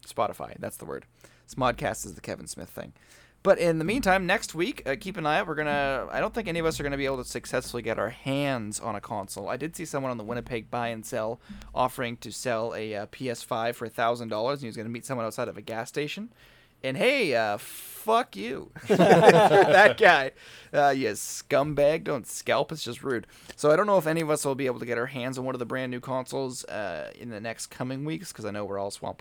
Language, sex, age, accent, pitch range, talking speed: English, male, 20-39, American, 110-140 Hz, 240 wpm